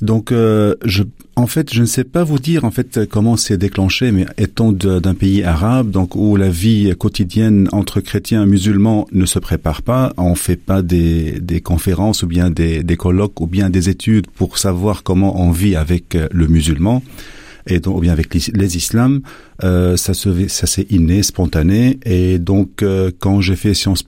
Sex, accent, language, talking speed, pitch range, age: male, French, French, 195 wpm, 90-105 Hz, 40-59